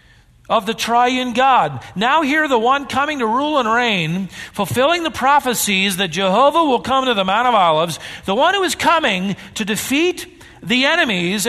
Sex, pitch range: male, 160-265 Hz